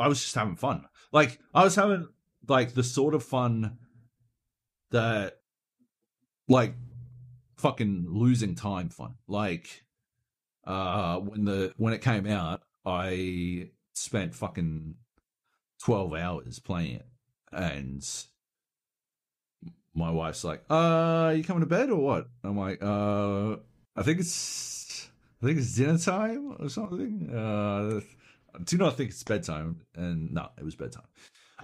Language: English